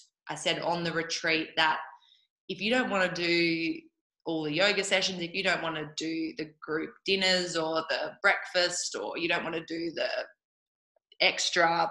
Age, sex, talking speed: 20-39, female, 180 wpm